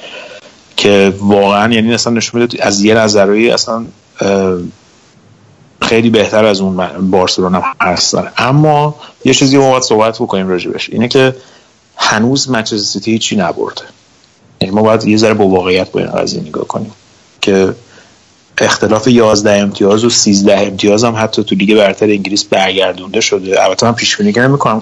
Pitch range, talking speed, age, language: 100-115 Hz, 145 wpm, 30-49, Persian